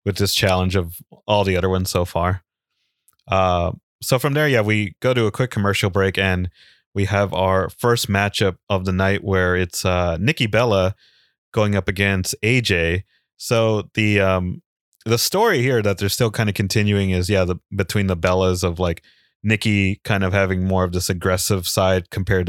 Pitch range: 95-110 Hz